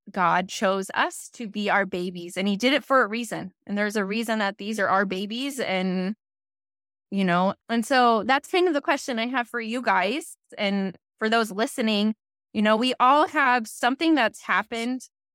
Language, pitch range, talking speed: English, 195-240 Hz, 195 wpm